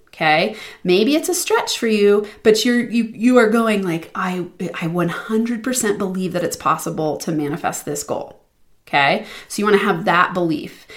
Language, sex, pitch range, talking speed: English, female, 170-210 Hz, 180 wpm